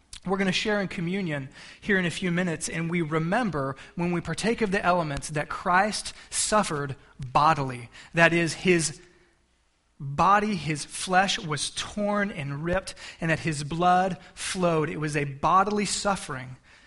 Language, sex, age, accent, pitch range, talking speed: English, male, 20-39, American, 165-205 Hz, 155 wpm